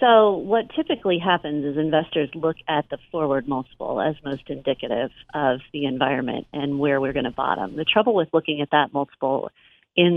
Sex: female